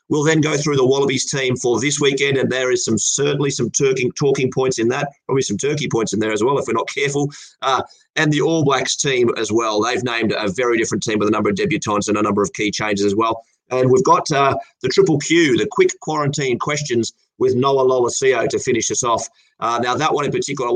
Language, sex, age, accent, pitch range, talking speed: English, male, 30-49, Australian, 115-150 Hz, 245 wpm